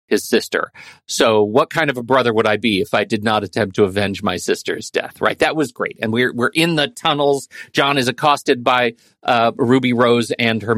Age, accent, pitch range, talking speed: 40-59, American, 115-160 Hz, 225 wpm